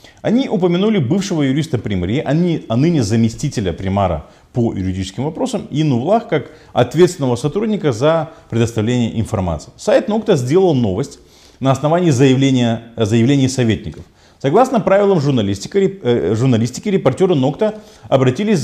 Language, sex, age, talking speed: Russian, male, 30-49, 115 wpm